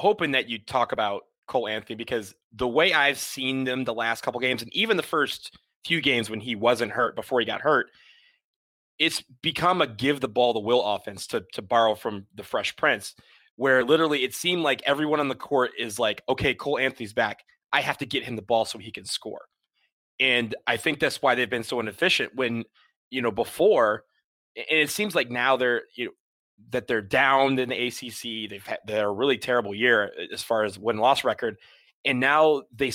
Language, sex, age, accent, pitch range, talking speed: English, male, 20-39, American, 115-145 Hz, 210 wpm